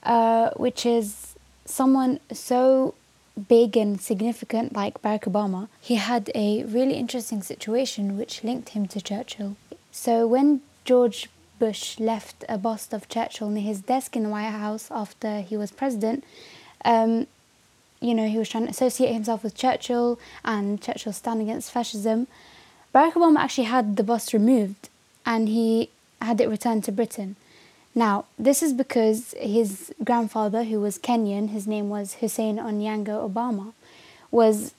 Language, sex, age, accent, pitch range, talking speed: English, female, 10-29, British, 215-240 Hz, 150 wpm